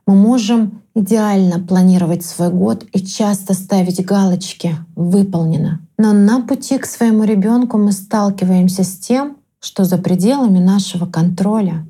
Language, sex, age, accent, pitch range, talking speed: Russian, female, 20-39, native, 185-220 Hz, 140 wpm